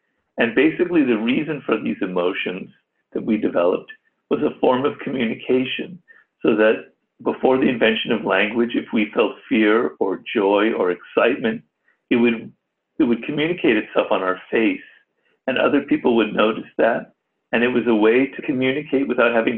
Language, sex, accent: English, male, American